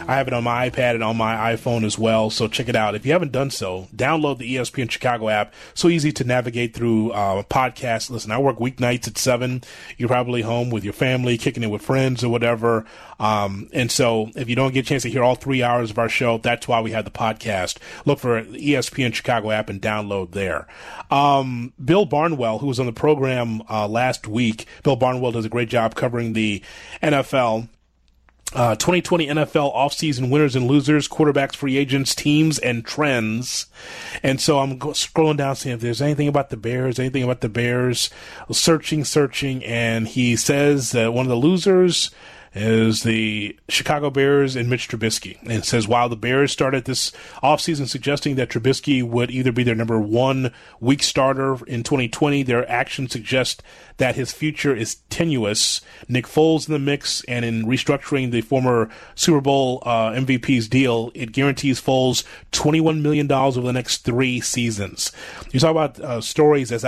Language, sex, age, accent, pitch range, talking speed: English, male, 30-49, American, 115-140 Hz, 190 wpm